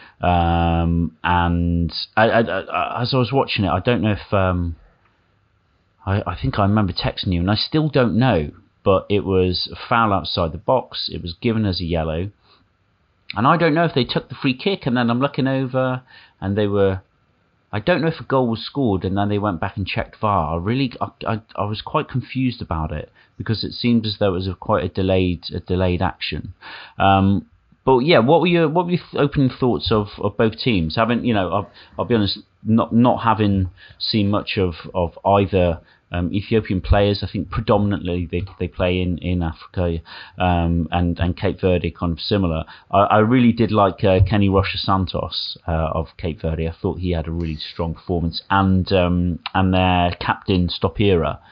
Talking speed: 205 wpm